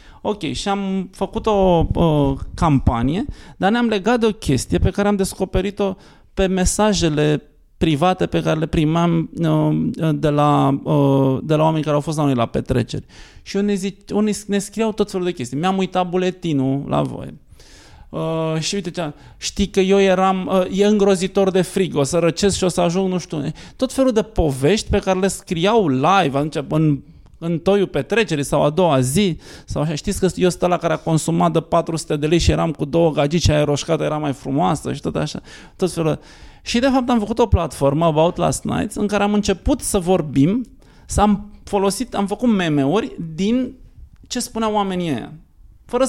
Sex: male